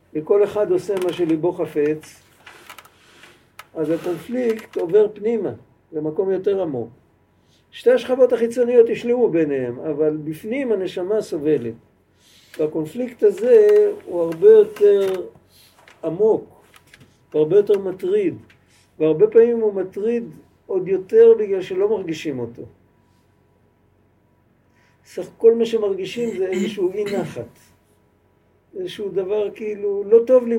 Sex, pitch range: male, 155-250 Hz